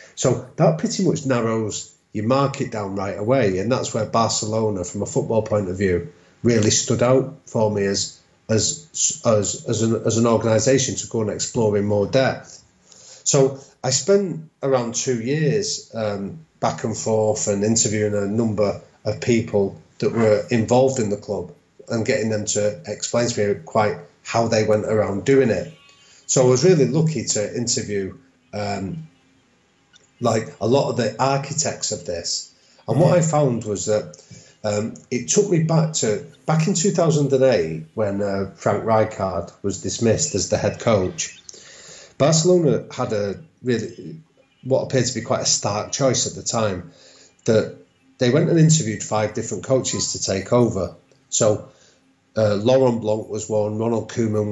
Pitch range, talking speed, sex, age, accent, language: 105-135 Hz, 165 wpm, male, 30-49, British, English